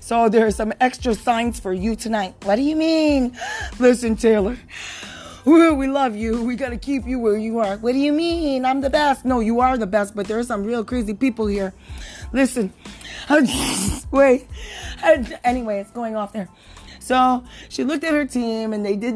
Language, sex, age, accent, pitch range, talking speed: English, female, 30-49, American, 205-255 Hz, 190 wpm